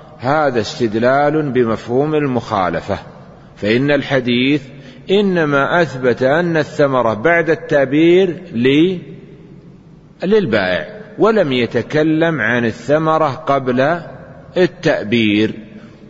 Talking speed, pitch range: 75 wpm, 125-155 Hz